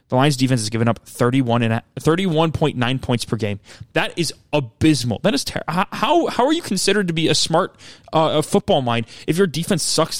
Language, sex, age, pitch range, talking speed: English, male, 20-39, 125-170 Hz, 210 wpm